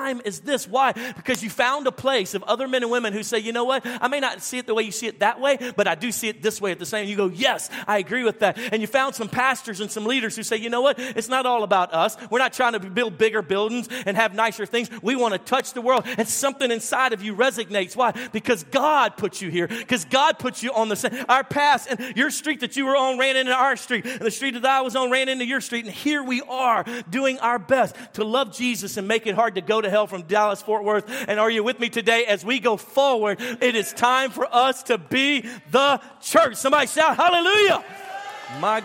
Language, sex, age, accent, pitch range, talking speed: English, male, 40-59, American, 200-255 Hz, 265 wpm